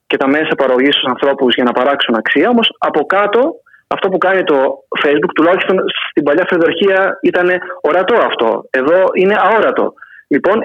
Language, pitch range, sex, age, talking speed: Greek, 155-220 Hz, male, 30-49, 165 wpm